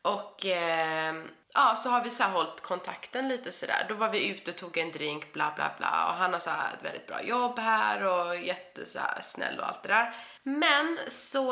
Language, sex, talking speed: Swedish, female, 210 wpm